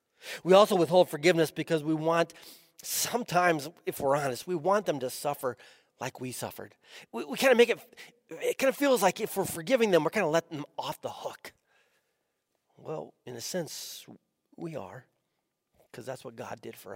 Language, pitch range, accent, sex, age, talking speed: English, 120-180 Hz, American, male, 40-59, 190 wpm